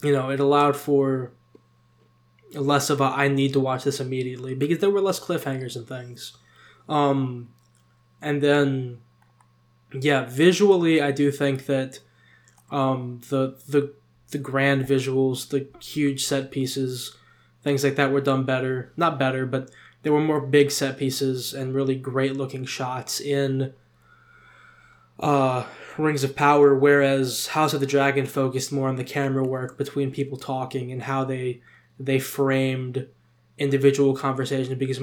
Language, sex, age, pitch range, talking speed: English, male, 10-29, 130-140 Hz, 145 wpm